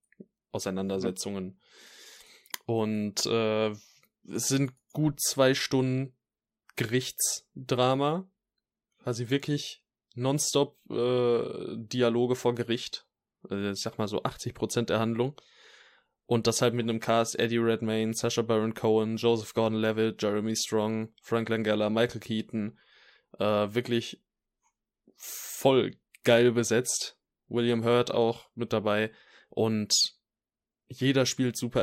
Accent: German